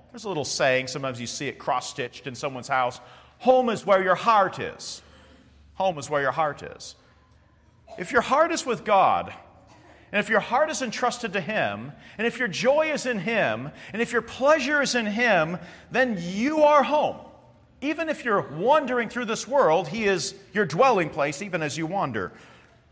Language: English